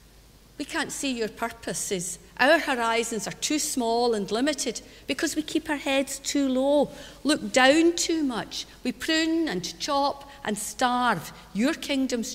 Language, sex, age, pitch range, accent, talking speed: English, female, 50-69, 200-265 Hz, British, 150 wpm